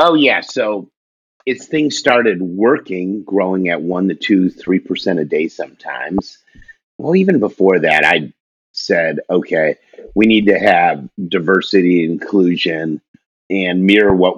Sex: male